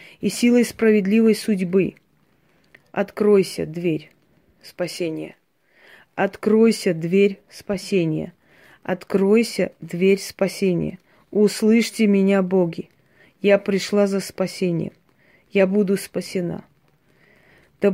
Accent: native